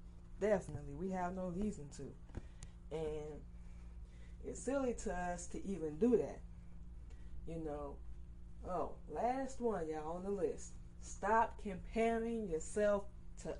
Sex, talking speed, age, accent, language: female, 125 wpm, 20-39, American, English